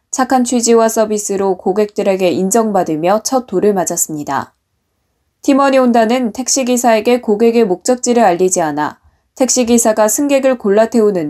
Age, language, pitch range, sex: 20-39, Korean, 185-255 Hz, female